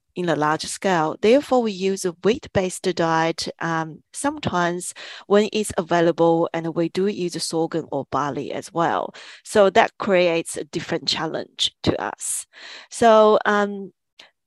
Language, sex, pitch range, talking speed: English, female, 170-210 Hz, 140 wpm